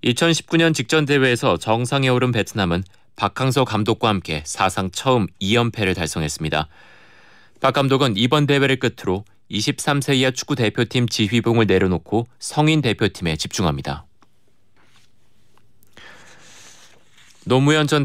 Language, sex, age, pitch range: Korean, male, 30-49, 95-130 Hz